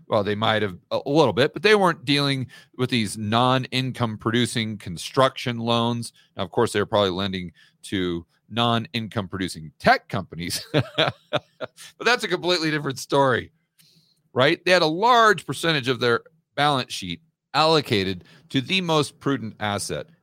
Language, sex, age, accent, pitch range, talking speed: English, male, 40-59, American, 125-175 Hz, 150 wpm